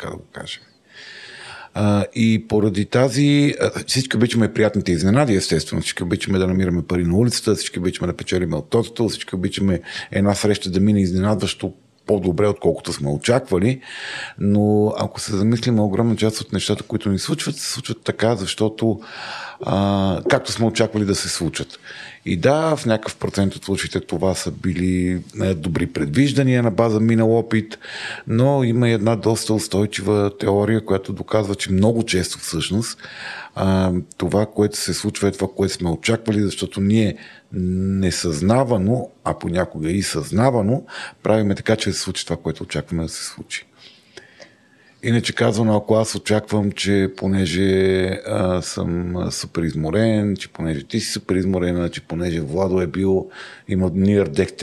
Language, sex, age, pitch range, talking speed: Bulgarian, male, 40-59, 90-110 Hz, 150 wpm